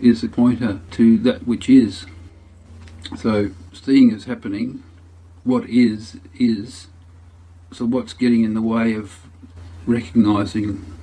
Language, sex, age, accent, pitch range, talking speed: English, male, 50-69, Australian, 85-125 Hz, 120 wpm